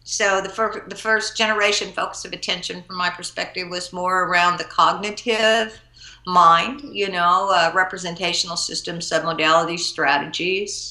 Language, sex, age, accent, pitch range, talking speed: English, female, 50-69, American, 165-195 Hz, 140 wpm